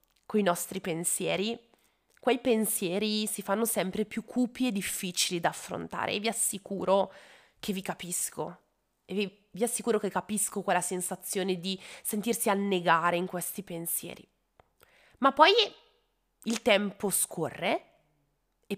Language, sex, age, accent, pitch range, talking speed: Italian, female, 20-39, native, 185-240 Hz, 130 wpm